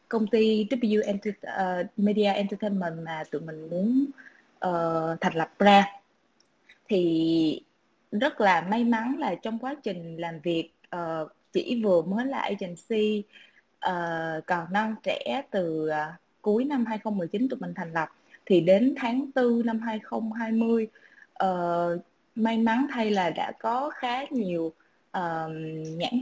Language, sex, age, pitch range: Vietnamese, female, 20-39, 175-245 Hz